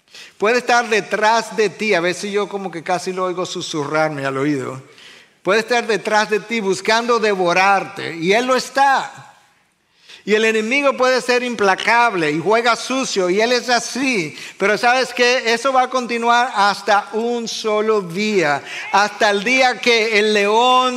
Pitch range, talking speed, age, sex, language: 180-235 Hz, 165 wpm, 50-69, male, Spanish